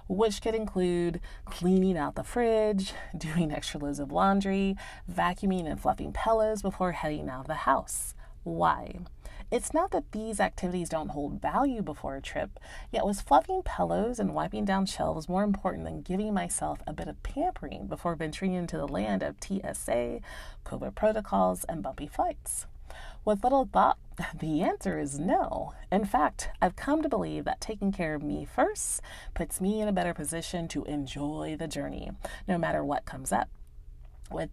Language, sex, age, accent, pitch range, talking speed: English, female, 30-49, American, 150-215 Hz, 170 wpm